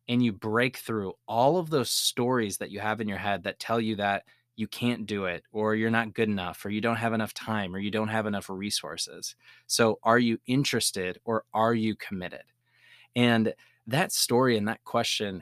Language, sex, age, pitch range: English, male, 20-39, 105-120 Hz